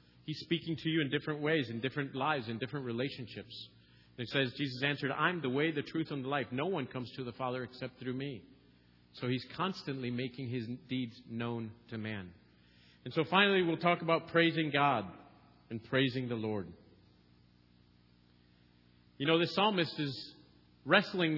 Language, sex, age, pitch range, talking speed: English, male, 40-59, 105-170 Hz, 175 wpm